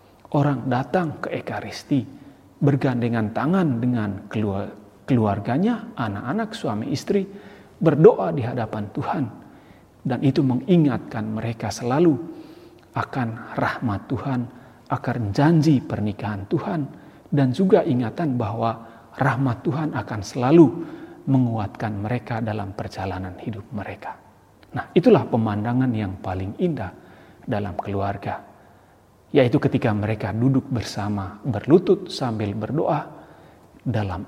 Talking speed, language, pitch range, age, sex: 100 wpm, Indonesian, 105-140 Hz, 40-59, male